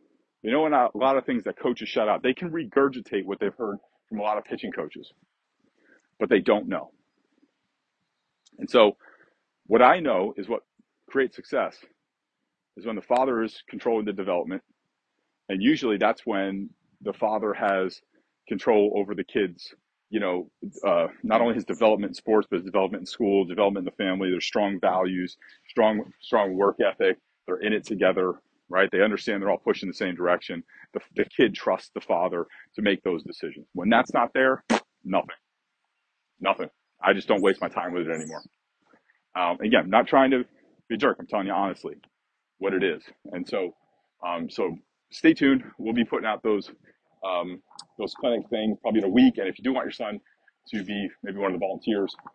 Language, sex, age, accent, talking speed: English, male, 40-59, American, 190 wpm